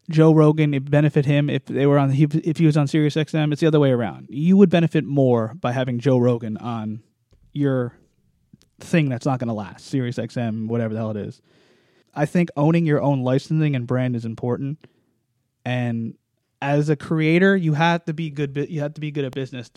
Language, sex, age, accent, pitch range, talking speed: English, male, 20-39, American, 135-155 Hz, 205 wpm